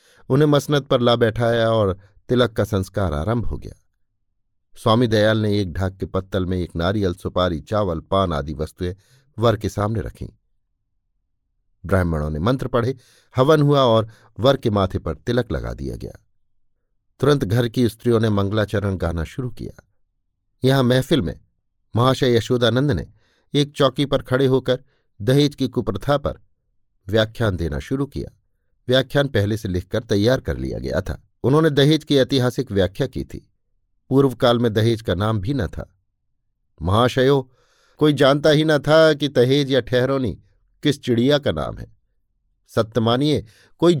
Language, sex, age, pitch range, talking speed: Hindi, male, 50-69, 100-140 Hz, 160 wpm